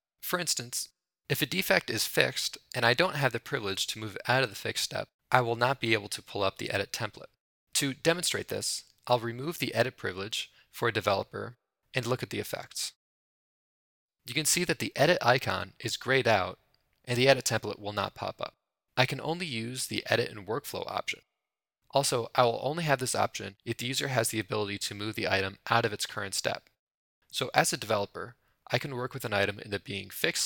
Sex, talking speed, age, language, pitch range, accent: male, 220 wpm, 20-39, English, 110-135 Hz, American